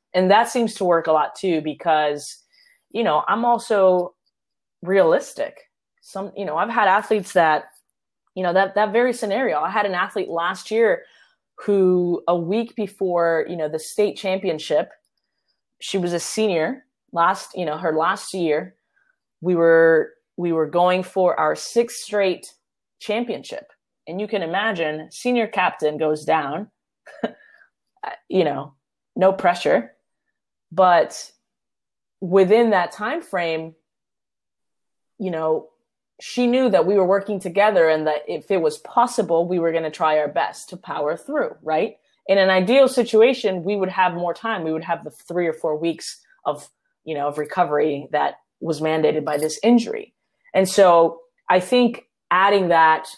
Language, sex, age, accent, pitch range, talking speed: English, female, 20-39, American, 160-215 Hz, 155 wpm